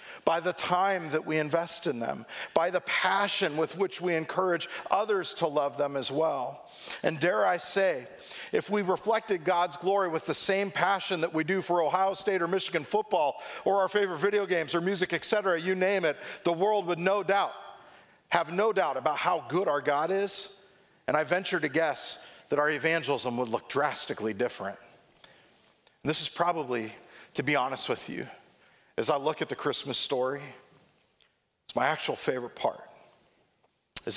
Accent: American